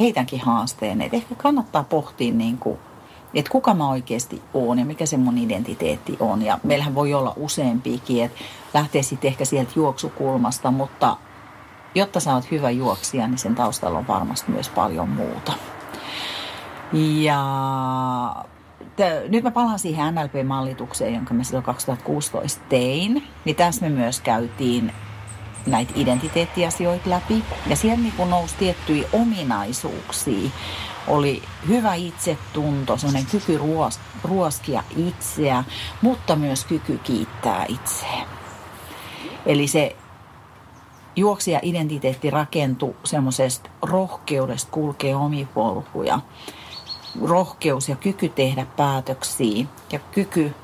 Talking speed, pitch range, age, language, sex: 110 wpm, 125-170 Hz, 40-59, Finnish, female